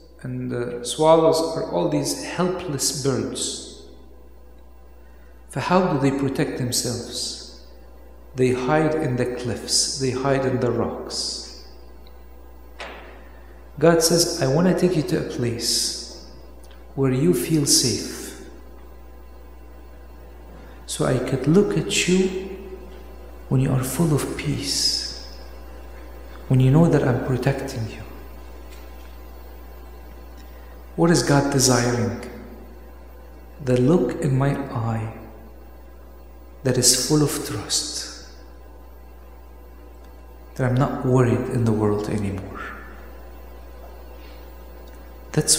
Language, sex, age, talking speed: English, male, 50-69, 105 wpm